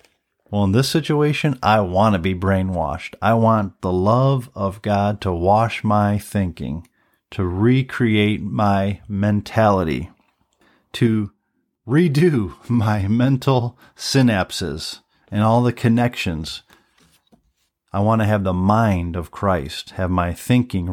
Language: English